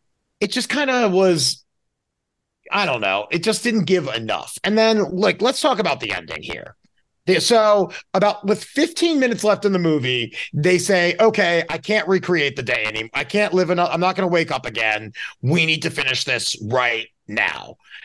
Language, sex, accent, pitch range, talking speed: English, male, American, 155-210 Hz, 190 wpm